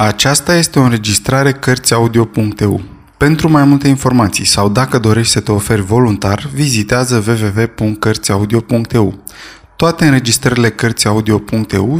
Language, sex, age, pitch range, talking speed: Romanian, male, 20-39, 105-140 Hz, 105 wpm